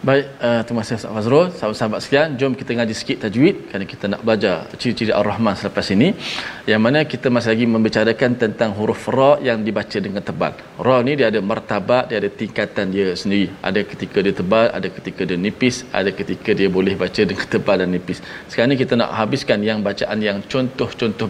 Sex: male